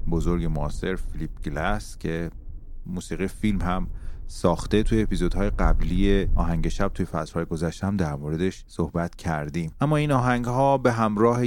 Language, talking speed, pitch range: Persian, 140 wpm, 80-105 Hz